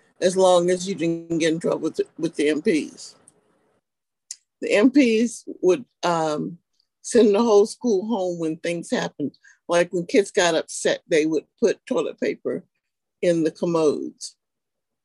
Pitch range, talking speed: 170-225 Hz, 150 wpm